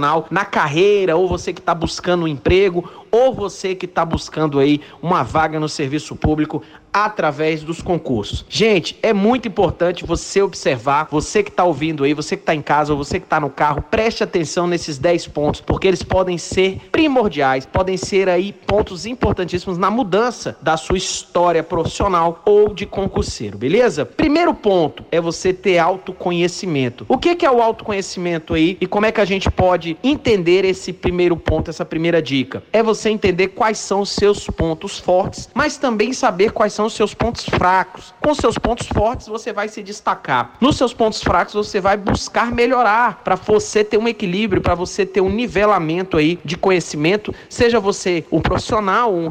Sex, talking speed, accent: male, 180 wpm, Brazilian